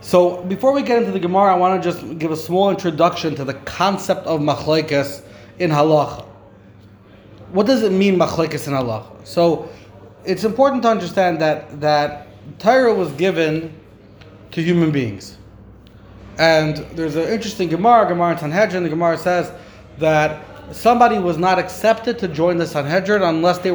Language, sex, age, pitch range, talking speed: English, male, 30-49, 145-190 Hz, 160 wpm